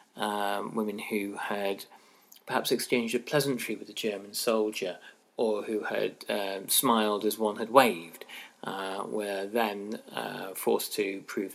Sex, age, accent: male, 30-49, British